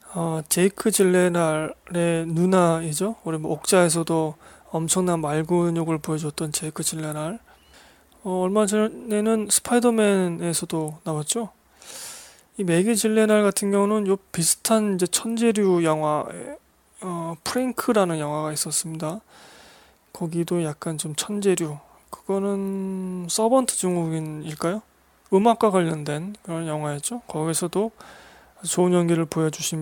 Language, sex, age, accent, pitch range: Korean, male, 20-39, native, 160-205 Hz